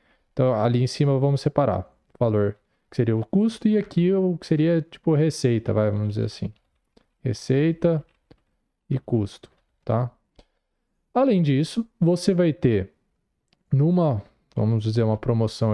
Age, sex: 20-39, male